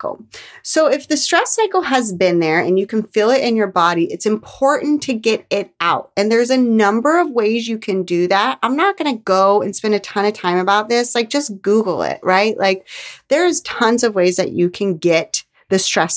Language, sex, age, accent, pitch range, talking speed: English, female, 30-49, American, 175-225 Hz, 225 wpm